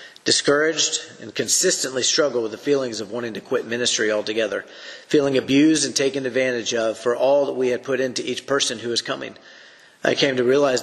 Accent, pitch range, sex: American, 115-140 Hz, male